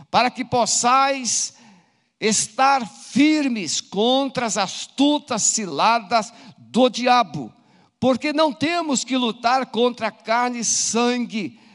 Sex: male